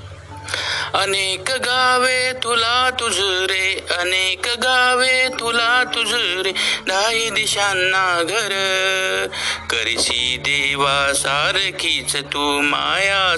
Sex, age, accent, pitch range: male, 50-69, native, 145-235 Hz